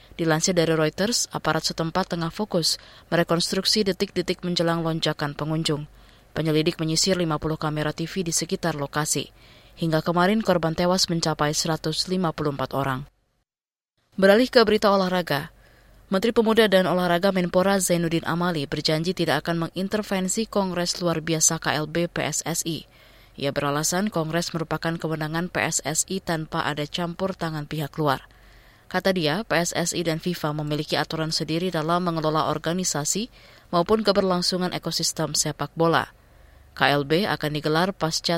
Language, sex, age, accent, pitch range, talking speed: Indonesian, female, 20-39, native, 150-180 Hz, 125 wpm